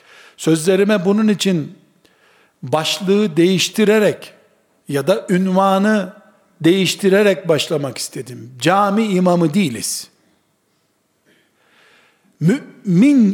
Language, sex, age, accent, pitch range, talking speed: Turkish, male, 60-79, native, 170-215 Hz, 65 wpm